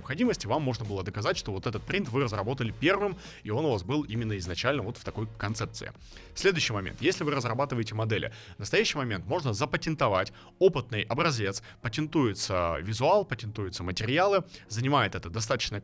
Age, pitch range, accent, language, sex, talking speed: 30-49, 110-150 Hz, native, Russian, male, 160 wpm